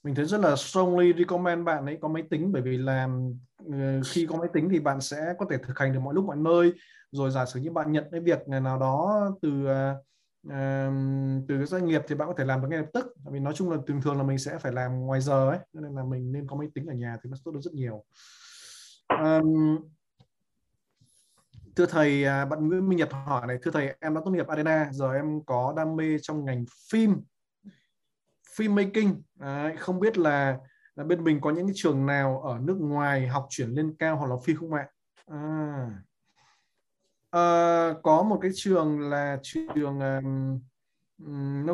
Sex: male